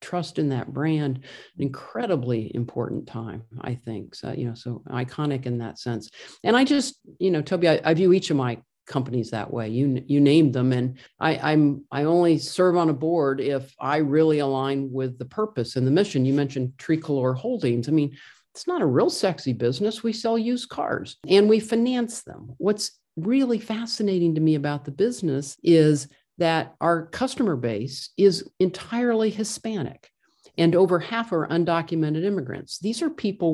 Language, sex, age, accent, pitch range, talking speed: English, male, 50-69, American, 130-185 Hz, 180 wpm